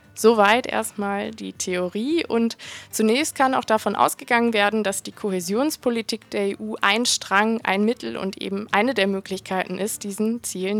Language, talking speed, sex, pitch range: Spanish, 155 wpm, female, 195-230 Hz